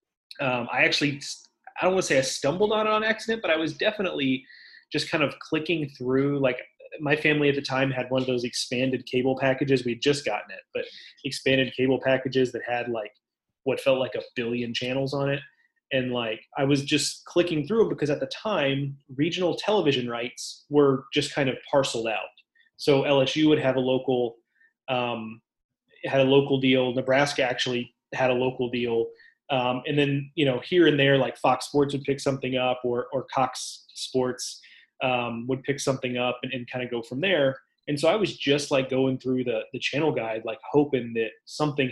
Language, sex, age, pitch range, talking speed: English, male, 30-49, 125-145 Hz, 200 wpm